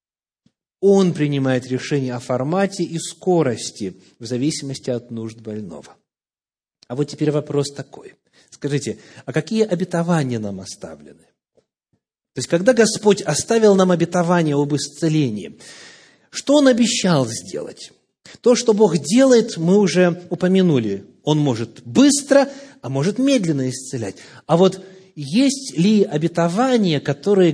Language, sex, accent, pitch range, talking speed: Russian, male, native, 140-190 Hz, 120 wpm